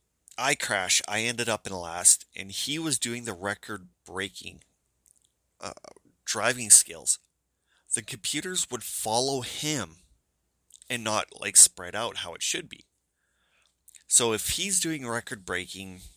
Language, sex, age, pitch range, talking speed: English, male, 30-49, 85-125 Hz, 125 wpm